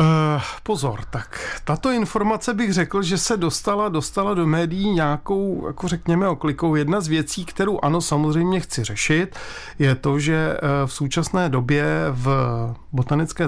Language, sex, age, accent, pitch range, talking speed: Czech, male, 40-59, native, 135-160 Hz, 145 wpm